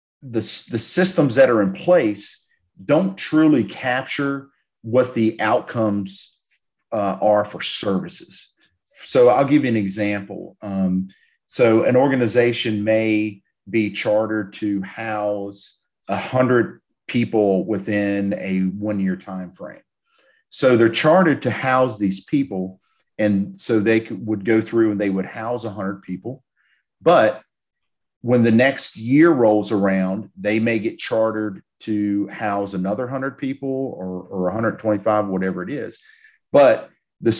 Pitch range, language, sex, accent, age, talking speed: 100-125 Hz, English, male, American, 40-59, 135 wpm